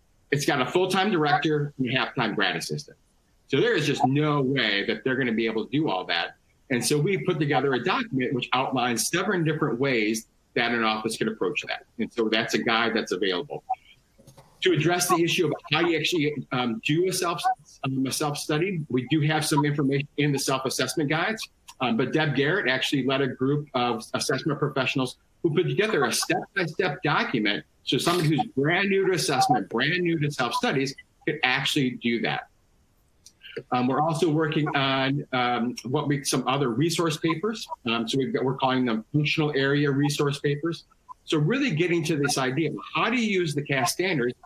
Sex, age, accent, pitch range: male, 40-59, American, 125-155 Hz